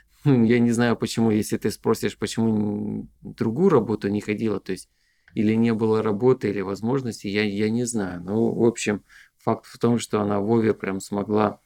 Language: Russian